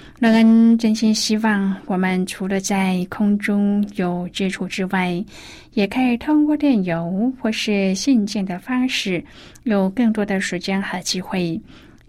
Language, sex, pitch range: Chinese, female, 180-220 Hz